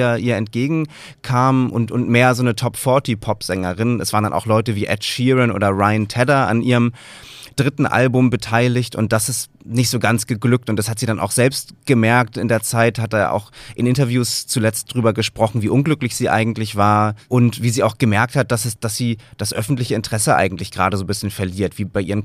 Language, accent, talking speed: German, German, 210 wpm